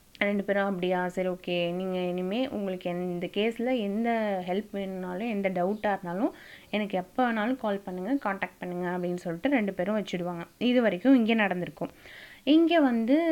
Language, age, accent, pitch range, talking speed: Tamil, 20-39, native, 180-225 Hz, 155 wpm